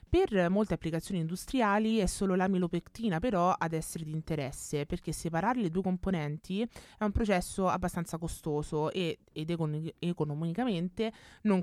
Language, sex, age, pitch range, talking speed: Italian, female, 20-39, 155-200 Hz, 130 wpm